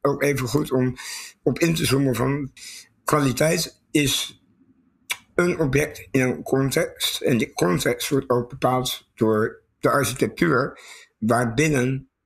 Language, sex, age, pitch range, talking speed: Dutch, male, 60-79, 120-140 Hz, 125 wpm